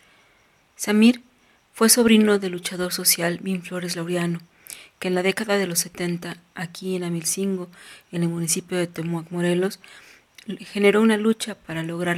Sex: female